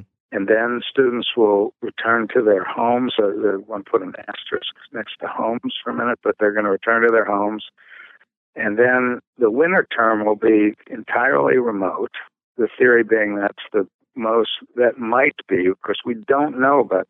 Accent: American